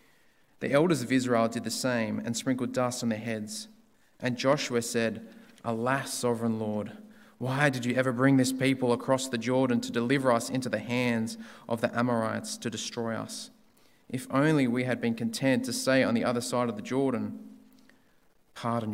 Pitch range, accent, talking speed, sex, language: 115-145 Hz, Australian, 180 wpm, male, English